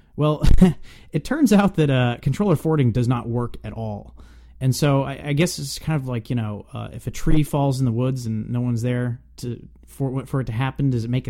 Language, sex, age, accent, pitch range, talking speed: English, male, 30-49, American, 115-135 Hz, 240 wpm